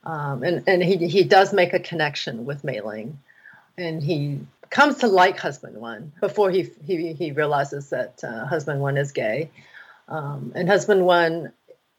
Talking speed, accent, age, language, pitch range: 165 wpm, American, 40-59, English, 140-175 Hz